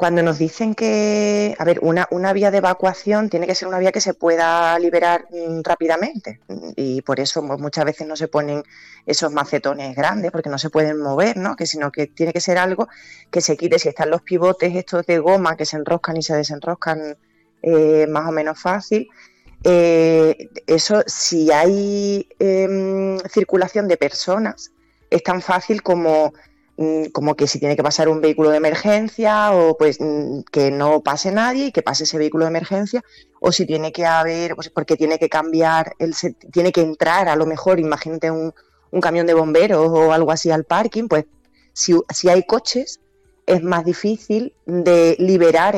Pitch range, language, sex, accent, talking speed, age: 155-185 Hz, Spanish, female, Spanish, 185 wpm, 20-39